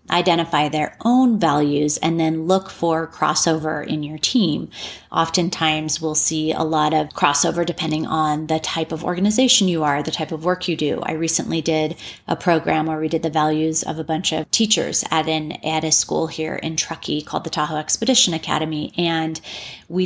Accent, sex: American, female